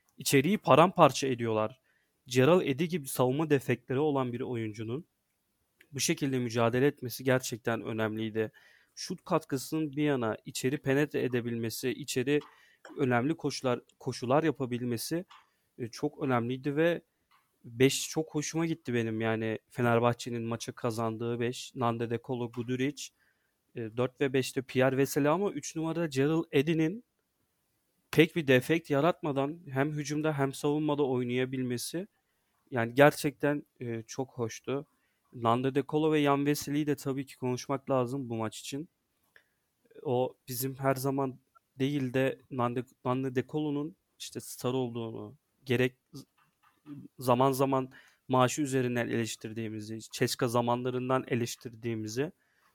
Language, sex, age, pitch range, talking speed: Turkish, male, 30-49, 120-145 Hz, 115 wpm